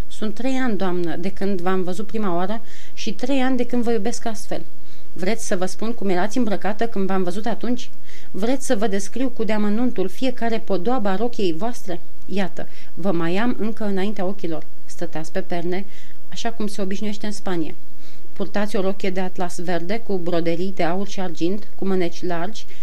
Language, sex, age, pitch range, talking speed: Romanian, female, 30-49, 180-220 Hz, 185 wpm